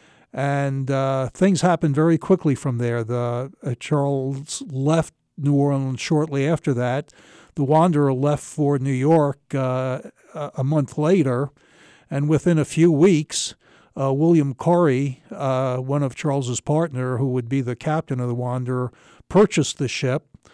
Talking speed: 150 wpm